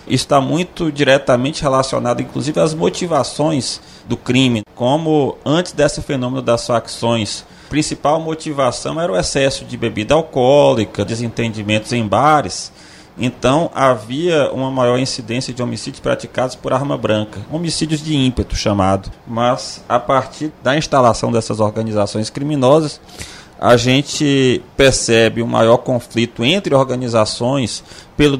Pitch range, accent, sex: 115-145 Hz, Brazilian, male